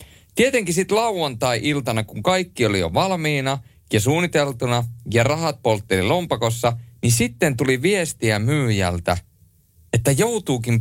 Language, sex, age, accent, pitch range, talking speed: Finnish, male, 30-49, native, 95-130 Hz, 115 wpm